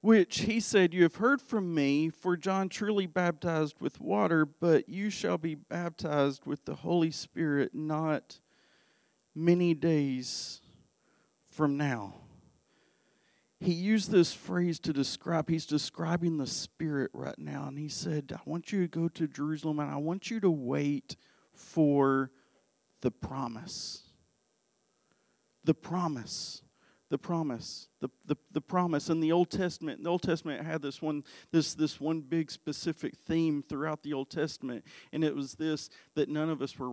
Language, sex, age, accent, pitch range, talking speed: English, male, 40-59, American, 150-180 Hz, 155 wpm